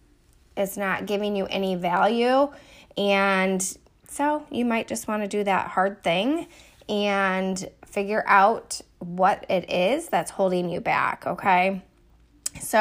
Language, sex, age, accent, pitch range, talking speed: English, female, 20-39, American, 190-225 Hz, 135 wpm